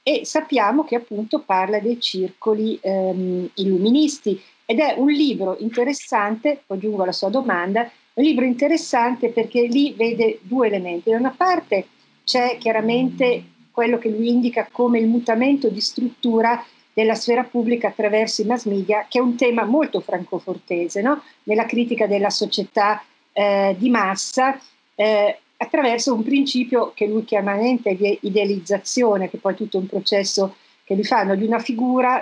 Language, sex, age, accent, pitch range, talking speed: Italian, female, 50-69, native, 200-245 Hz, 150 wpm